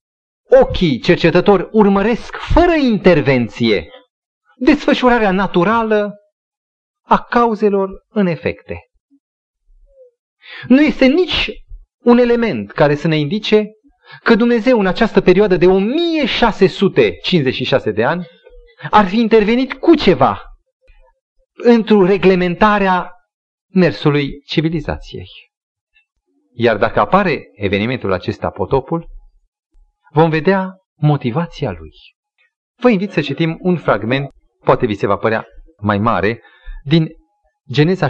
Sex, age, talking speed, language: male, 30-49, 100 wpm, Romanian